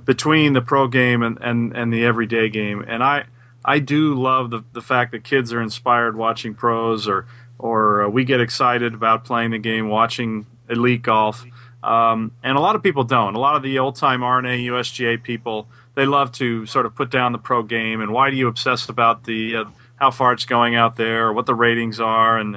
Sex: male